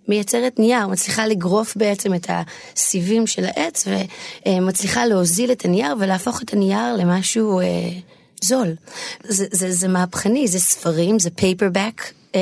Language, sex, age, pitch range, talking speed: Hebrew, female, 30-49, 180-235 Hz, 130 wpm